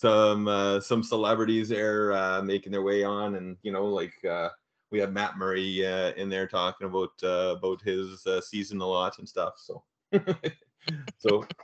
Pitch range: 100-135 Hz